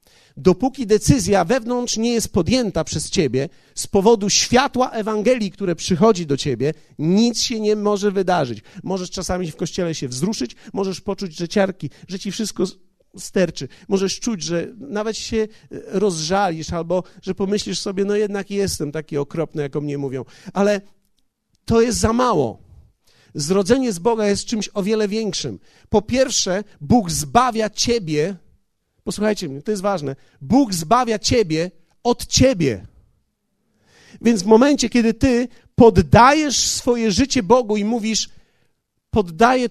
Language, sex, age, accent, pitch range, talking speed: Polish, male, 40-59, native, 165-230 Hz, 140 wpm